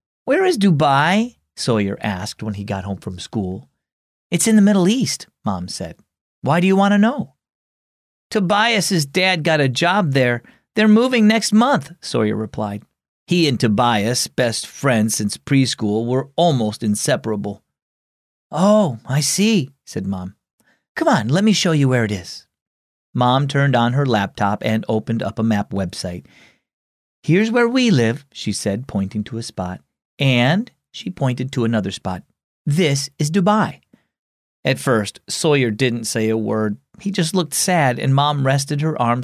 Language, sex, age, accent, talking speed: English, male, 40-59, American, 160 wpm